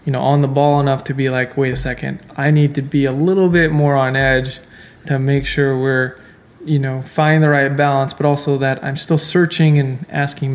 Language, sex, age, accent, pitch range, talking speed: English, male, 20-39, American, 135-155 Hz, 230 wpm